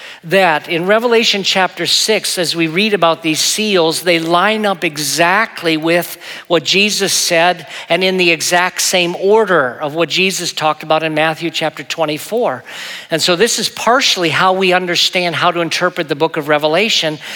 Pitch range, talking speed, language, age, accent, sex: 160-190 Hz, 170 wpm, English, 50-69, American, male